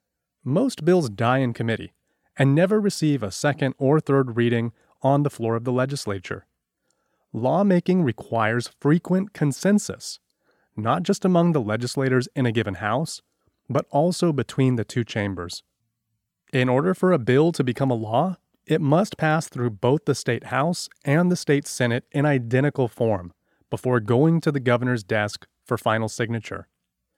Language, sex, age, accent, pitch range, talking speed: English, male, 30-49, American, 115-155 Hz, 155 wpm